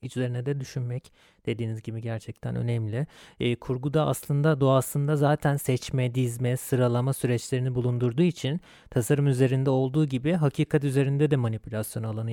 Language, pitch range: Turkish, 120-145 Hz